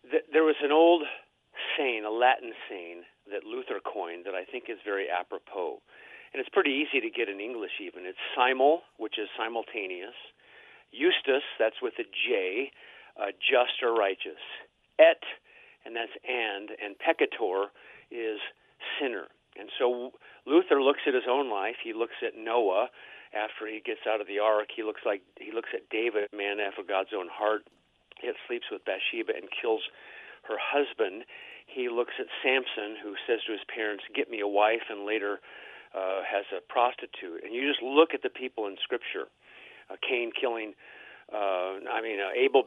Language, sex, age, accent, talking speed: English, male, 50-69, American, 170 wpm